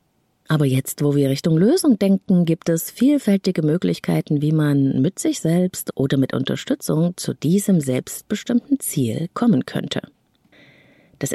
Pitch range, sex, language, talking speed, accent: 140-200 Hz, female, German, 135 wpm, German